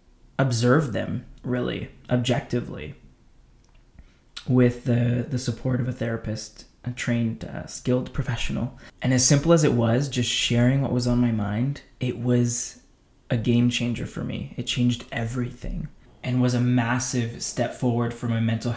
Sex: male